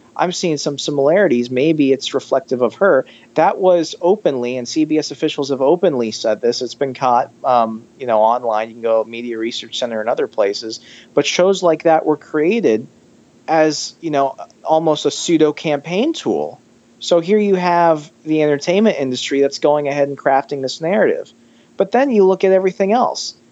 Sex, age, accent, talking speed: male, 40-59, American, 180 wpm